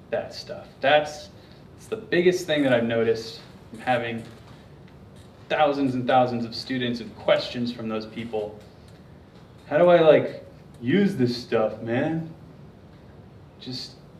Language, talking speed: English, 125 wpm